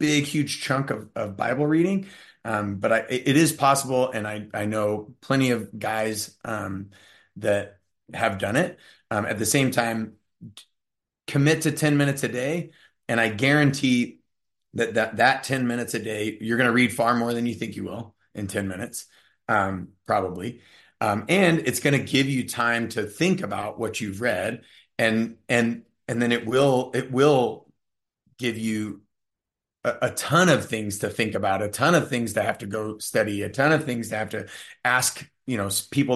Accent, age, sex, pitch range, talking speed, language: American, 30-49, male, 105-125 Hz, 190 wpm, English